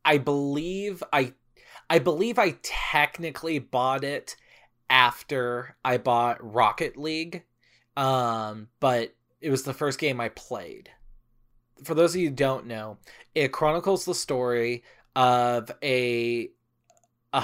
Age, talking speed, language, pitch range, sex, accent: 20-39, 125 wpm, English, 120-145 Hz, male, American